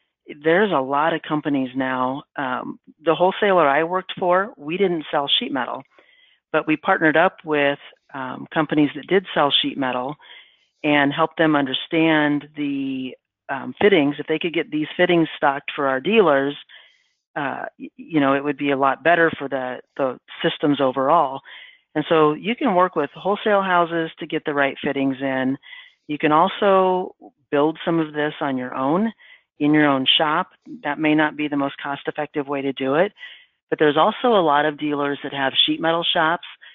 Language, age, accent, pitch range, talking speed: English, 40-59, American, 140-165 Hz, 180 wpm